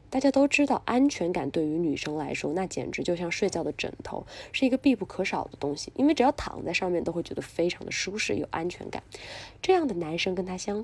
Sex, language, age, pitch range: female, Chinese, 20-39, 160-240 Hz